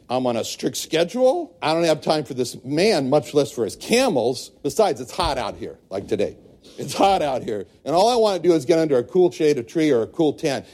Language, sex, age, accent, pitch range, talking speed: English, male, 60-79, American, 135-185 Hz, 255 wpm